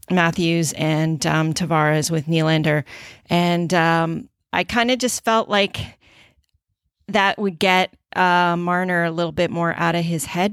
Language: English